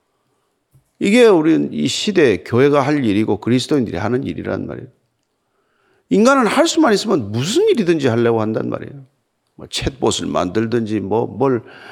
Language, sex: Korean, male